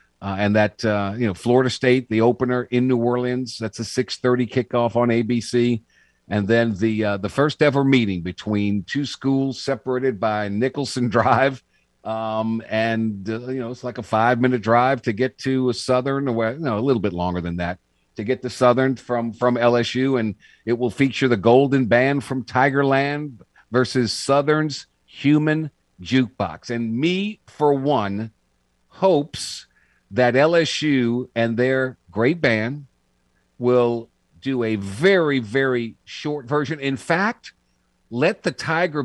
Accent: American